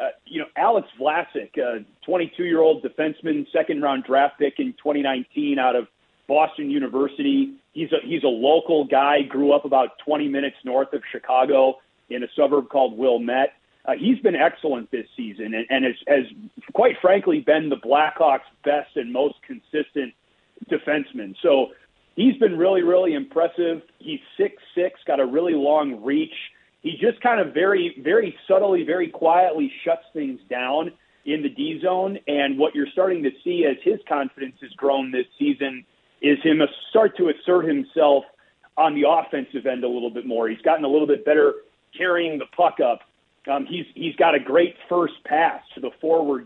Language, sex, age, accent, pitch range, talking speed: English, male, 40-59, American, 140-190 Hz, 175 wpm